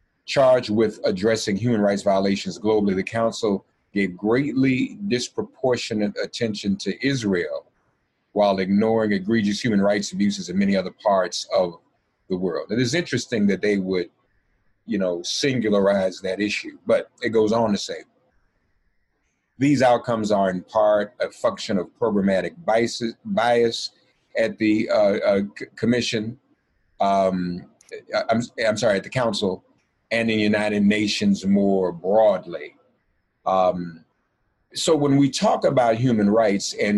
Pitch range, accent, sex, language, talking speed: 100-130 Hz, American, male, English, 135 wpm